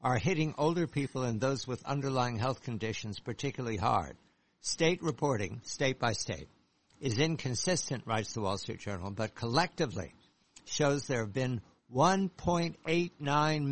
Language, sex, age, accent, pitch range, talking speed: English, male, 60-79, American, 125-160 Hz, 135 wpm